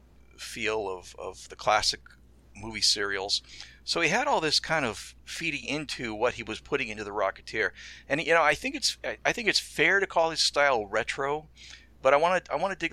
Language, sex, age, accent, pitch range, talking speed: English, male, 40-59, American, 100-140 Hz, 210 wpm